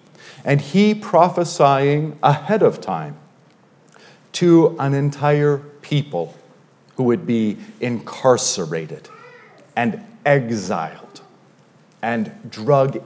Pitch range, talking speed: 120-155 Hz, 85 wpm